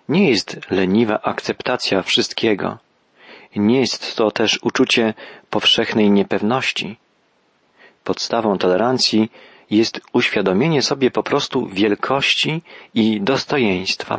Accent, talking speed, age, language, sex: native, 95 wpm, 40-59, Polish, male